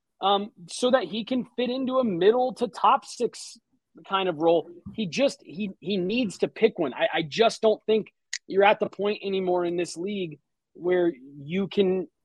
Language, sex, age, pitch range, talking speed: English, male, 30-49, 170-210 Hz, 190 wpm